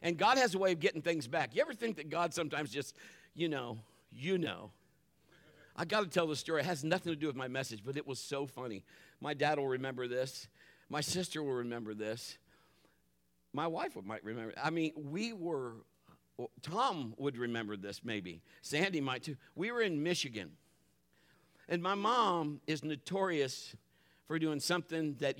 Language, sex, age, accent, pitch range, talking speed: English, male, 50-69, American, 130-200 Hz, 185 wpm